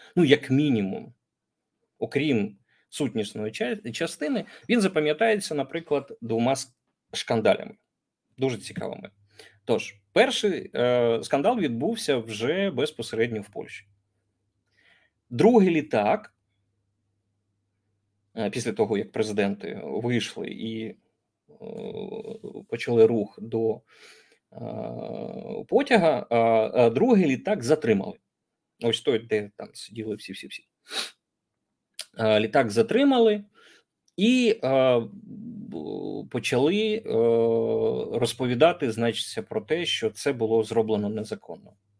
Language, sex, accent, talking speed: Ukrainian, male, native, 85 wpm